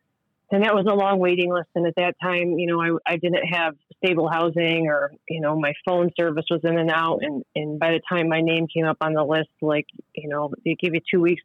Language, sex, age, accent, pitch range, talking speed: English, female, 30-49, American, 155-170 Hz, 255 wpm